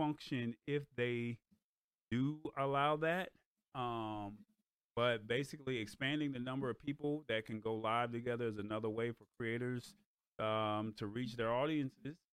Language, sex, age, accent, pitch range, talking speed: English, male, 30-49, American, 105-130 Hz, 140 wpm